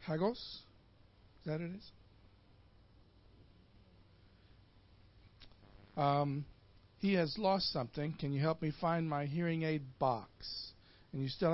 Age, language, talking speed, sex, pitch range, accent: 50-69, English, 115 wpm, male, 100-155 Hz, American